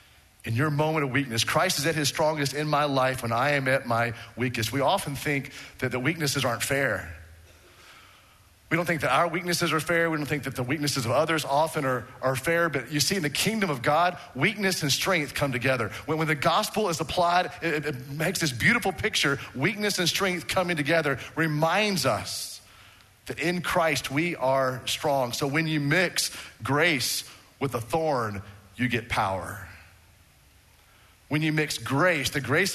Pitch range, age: 105-150 Hz, 40-59